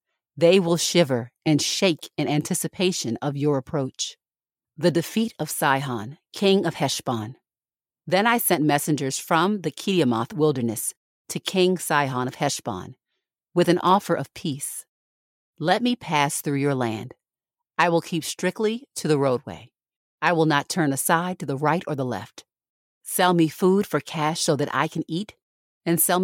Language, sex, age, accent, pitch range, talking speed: English, female, 40-59, American, 135-180 Hz, 160 wpm